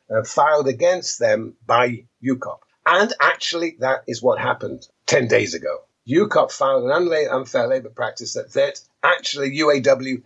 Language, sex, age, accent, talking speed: English, male, 50-69, British, 140 wpm